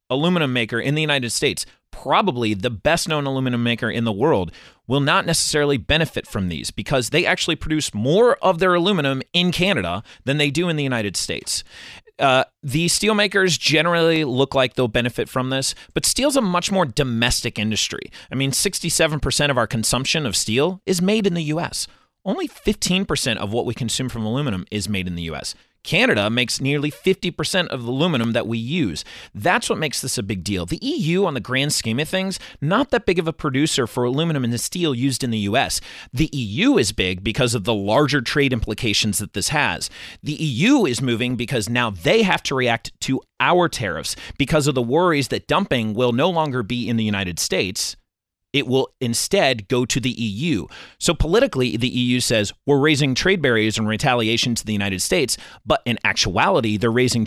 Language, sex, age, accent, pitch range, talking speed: English, male, 30-49, American, 110-155 Hz, 200 wpm